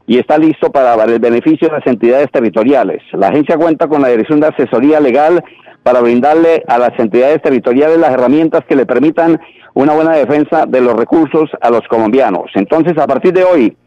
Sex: male